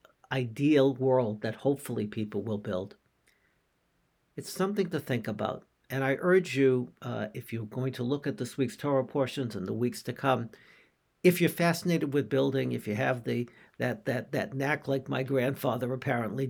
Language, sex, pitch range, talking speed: English, male, 115-140 Hz, 180 wpm